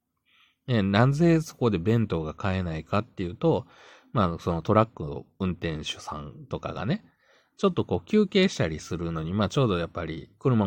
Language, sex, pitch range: Japanese, male, 85-125 Hz